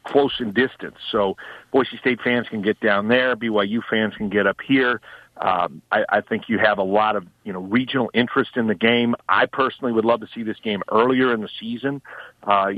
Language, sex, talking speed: English, male, 215 wpm